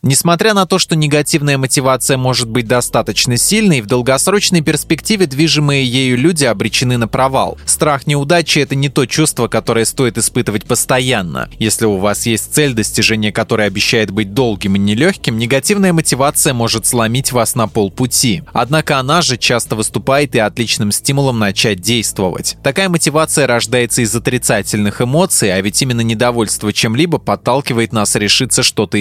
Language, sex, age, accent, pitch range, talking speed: Russian, male, 20-39, native, 110-150 Hz, 155 wpm